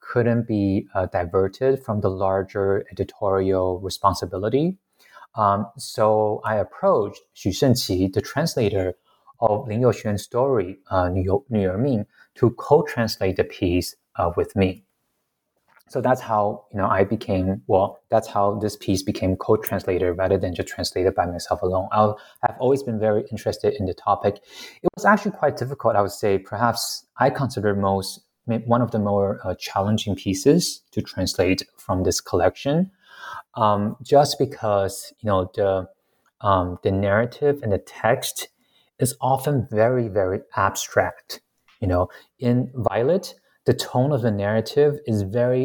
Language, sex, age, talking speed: English, male, 30-49, 150 wpm